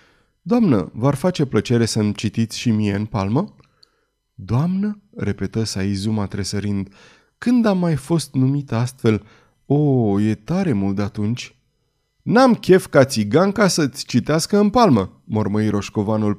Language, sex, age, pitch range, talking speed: Romanian, male, 20-39, 115-170 Hz, 135 wpm